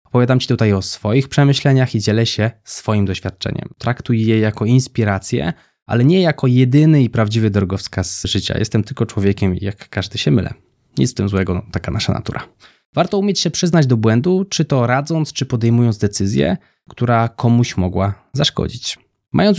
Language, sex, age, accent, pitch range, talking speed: Polish, male, 20-39, native, 105-130 Hz, 165 wpm